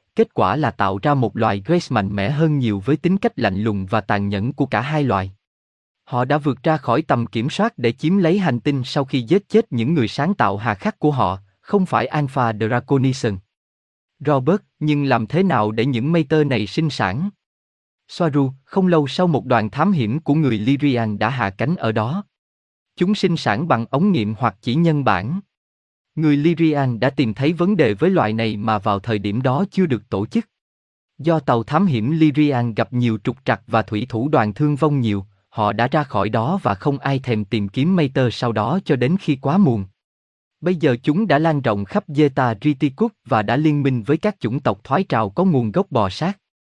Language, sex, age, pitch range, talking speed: Vietnamese, male, 20-39, 110-155 Hz, 220 wpm